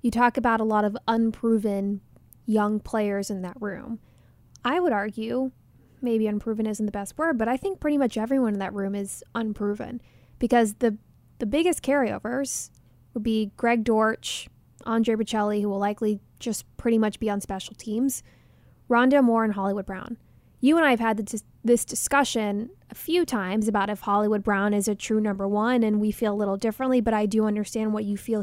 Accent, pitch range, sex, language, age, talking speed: American, 210-250 Hz, female, English, 20-39, 190 wpm